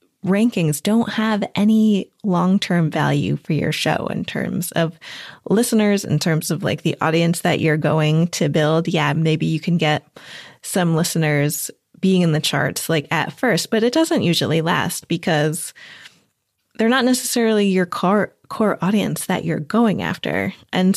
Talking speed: 155 wpm